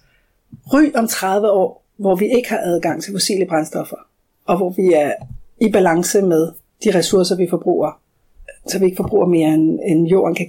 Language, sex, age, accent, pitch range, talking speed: Danish, female, 60-79, native, 195-245 Hz, 185 wpm